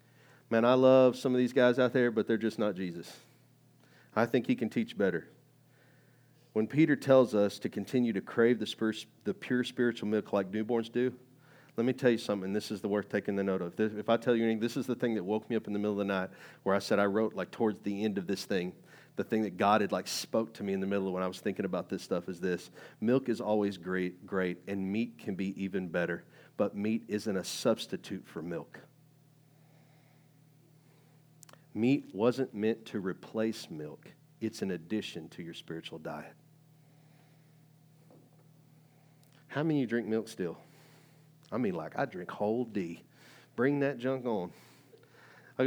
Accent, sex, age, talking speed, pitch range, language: American, male, 40-59, 200 wpm, 110-150 Hz, English